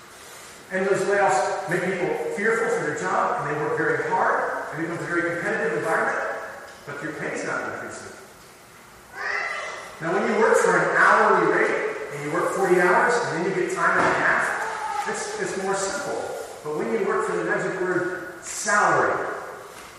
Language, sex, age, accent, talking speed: English, male, 40-59, American, 185 wpm